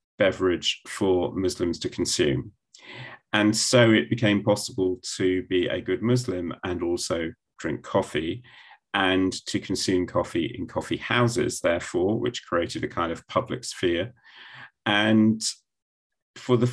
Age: 40-59